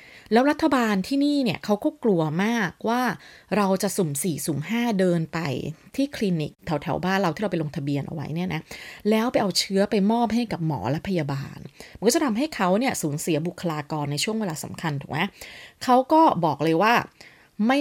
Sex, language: female, Thai